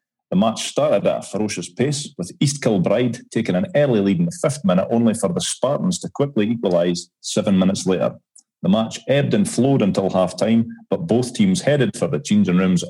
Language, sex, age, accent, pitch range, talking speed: English, male, 40-59, British, 95-140 Hz, 200 wpm